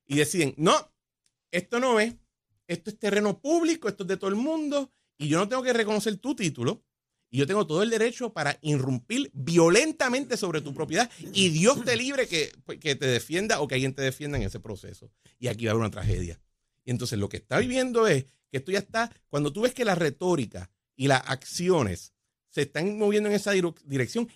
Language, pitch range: Spanish, 120-190 Hz